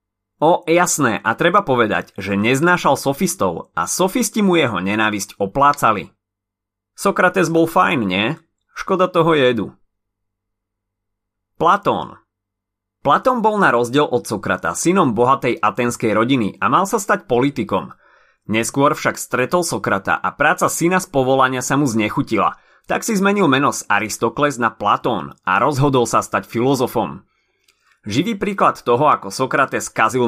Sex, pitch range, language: male, 105-165 Hz, Slovak